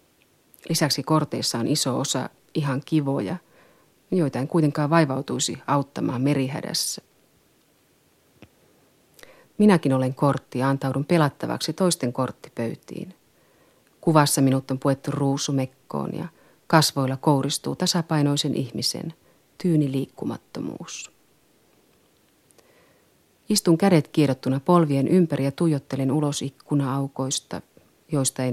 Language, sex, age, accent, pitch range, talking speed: Finnish, female, 30-49, native, 135-165 Hz, 95 wpm